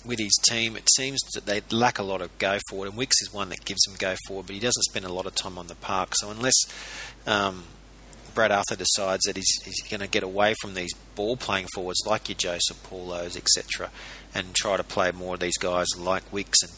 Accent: Australian